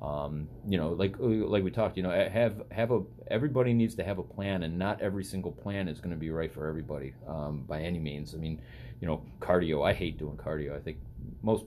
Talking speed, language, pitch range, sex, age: 235 wpm, English, 80-100 Hz, male, 30-49